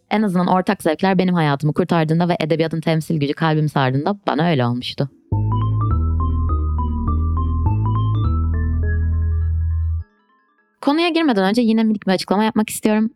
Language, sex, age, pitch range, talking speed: Turkish, female, 20-39, 155-210 Hz, 115 wpm